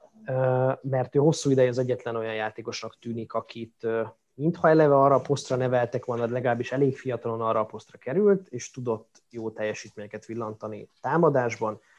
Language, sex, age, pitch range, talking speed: Hungarian, male, 20-39, 115-135 Hz, 140 wpm